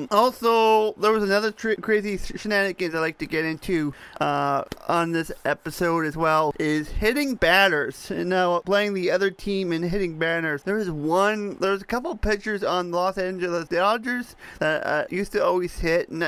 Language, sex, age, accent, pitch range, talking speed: English, male, 30-49, American, 170-200 Hz, 175 wpm